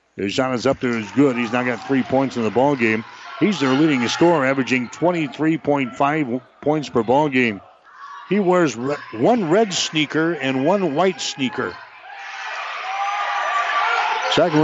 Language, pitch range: English, 130-150 Hz